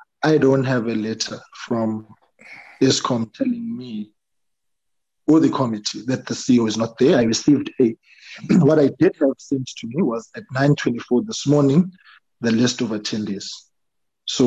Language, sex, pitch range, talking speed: English, male, 110-145 Hz, 160 wpm